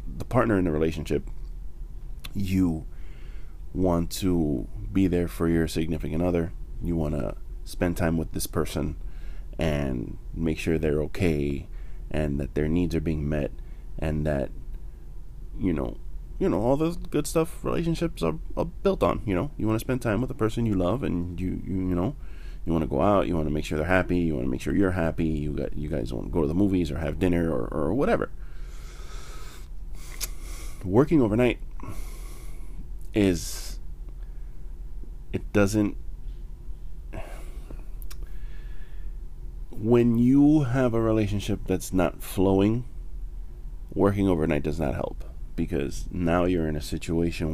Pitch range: 70-90 Hz